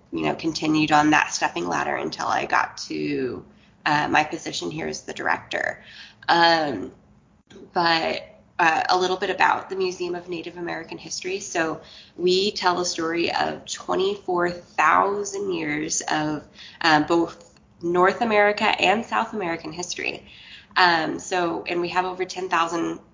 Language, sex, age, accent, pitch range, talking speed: English, female, 20-39, American, 155-195 Hz, 145 wpm